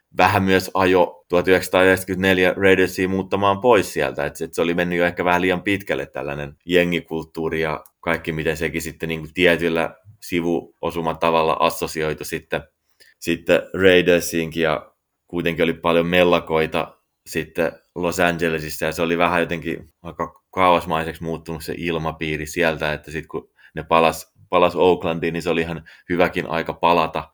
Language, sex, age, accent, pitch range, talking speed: Finnish, male, 20-39, native, 80-85 Hz, 140 wpm